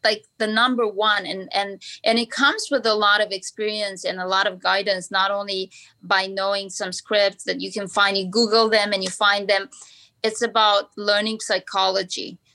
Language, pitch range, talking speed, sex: English, 190-240 Hz, 190 wpm, female